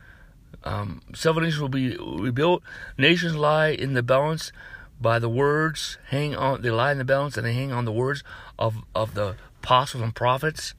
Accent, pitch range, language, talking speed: American, 115-190 Hz, English, 185 wpm